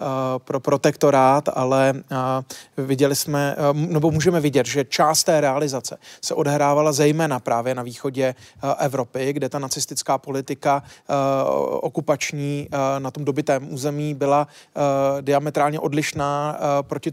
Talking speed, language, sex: 110 wpm, Czech, male